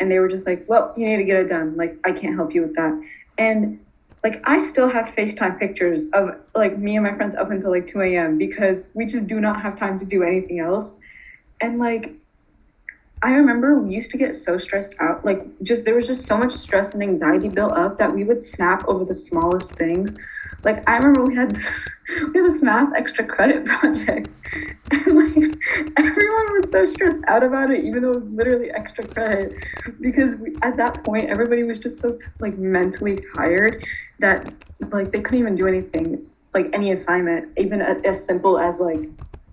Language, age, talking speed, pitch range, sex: English, 20-39, 200 wpm, 185-265 Hz, female